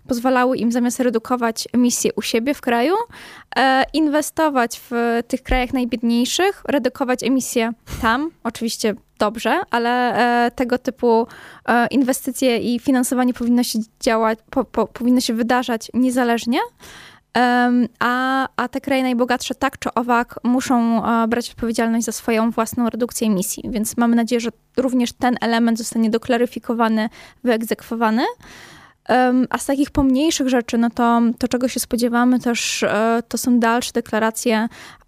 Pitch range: 230-250 Hz